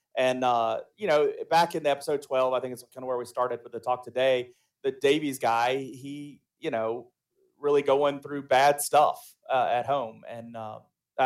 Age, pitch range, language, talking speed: 30-49, 125-145 Hz, English, 195 wpm